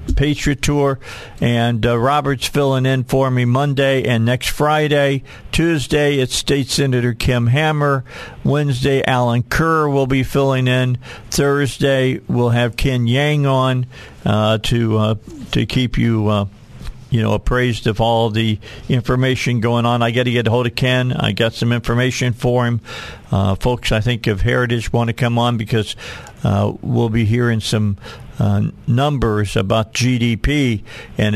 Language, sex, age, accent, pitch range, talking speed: English, male, 50-69, American, 110-140 Hz, 160 wpm